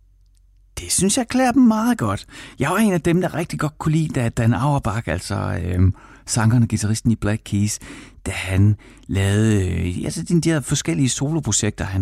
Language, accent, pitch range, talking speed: Danish, native, 100-135 Hz, 185 wpm